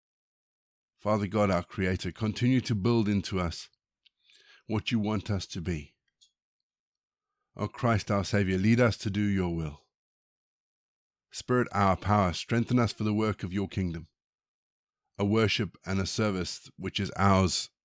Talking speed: 150 wpm